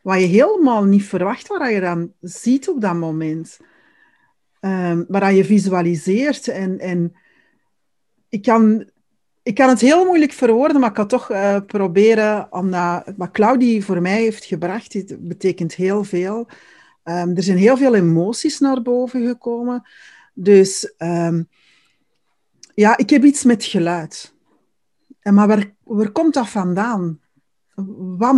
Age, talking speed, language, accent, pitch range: 40-59, 150 wpm, Dutch, Dutch, 175-225 Hz